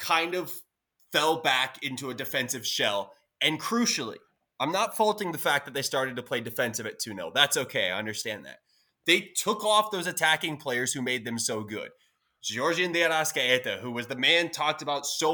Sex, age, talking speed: male, 20-39, 190 wpm